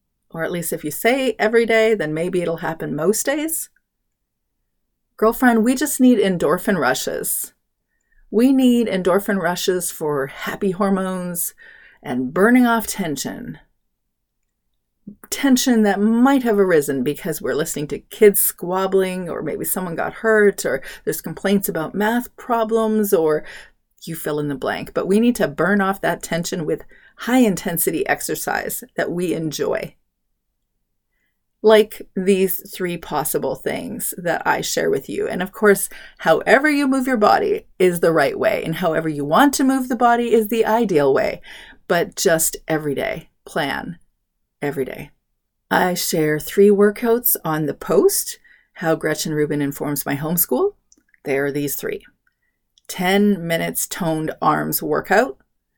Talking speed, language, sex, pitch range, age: 145 wpm, English, female, 160-230 Hz, 40-59